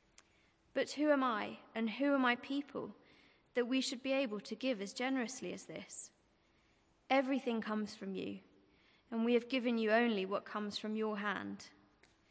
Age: 20-39